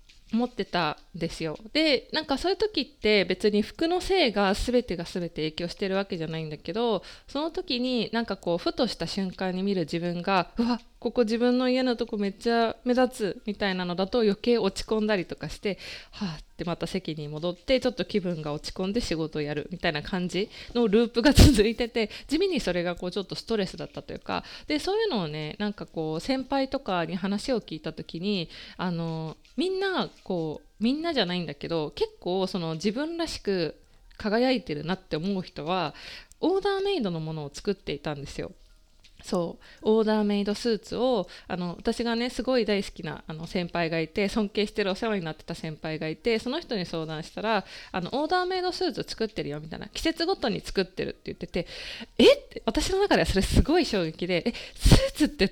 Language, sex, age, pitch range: Japanese, female, 20-39, 175-245 Hz